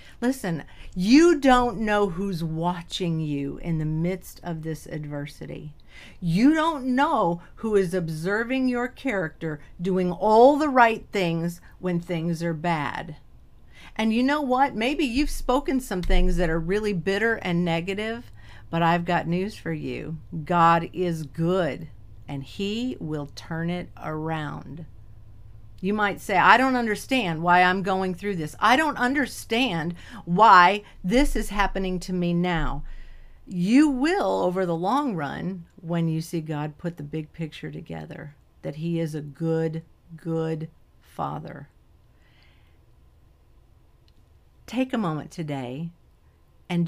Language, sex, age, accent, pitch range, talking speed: English, female, 50-69, American, 160-210 Hz, 140 wpm